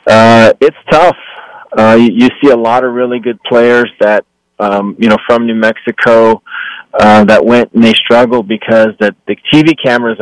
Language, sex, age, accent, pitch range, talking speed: English, male, 30-49, American, 105-125 Hz, 180 wpm